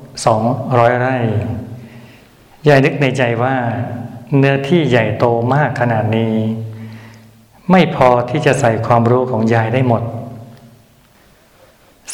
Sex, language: male, Thai